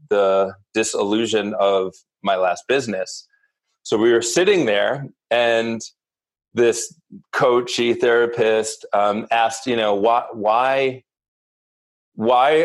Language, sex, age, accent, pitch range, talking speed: English, male, 30-49, American, 110-170 Hz, 100 wpm